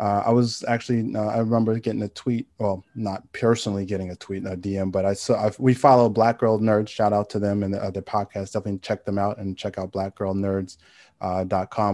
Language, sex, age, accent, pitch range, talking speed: English, male, 20-39, American, 100-115 Hz, 220 wpm